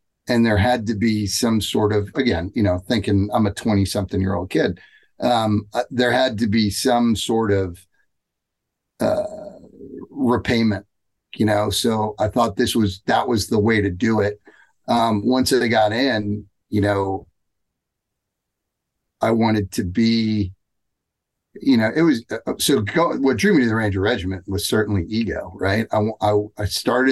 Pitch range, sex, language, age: 100-115 Hz, male, English, 40-59